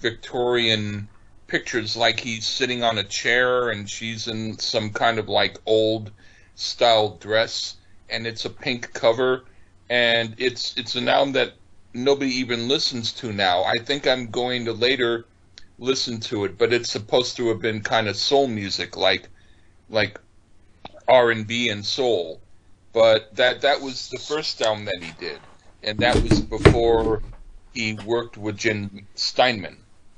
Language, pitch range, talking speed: English, 100-115 Hz, 155 wpm